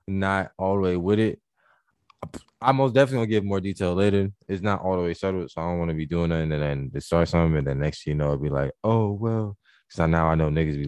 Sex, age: male, 20-39